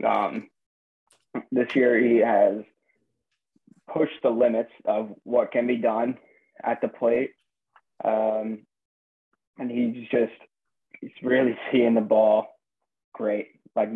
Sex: male